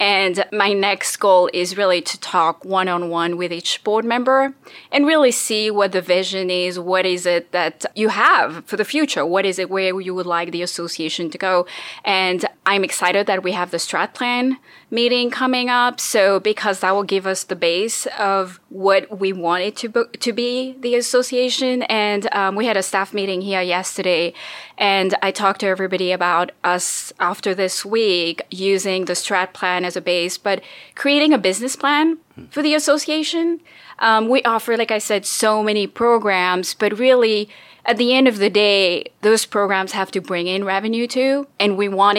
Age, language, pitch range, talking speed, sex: 20-39, English, 185-240 Hz, 190 wpm, female